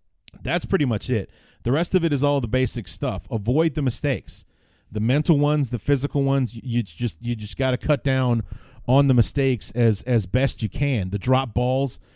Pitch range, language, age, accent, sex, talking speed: 110-135 Hz, English, 30-49, American, male, 205 wpm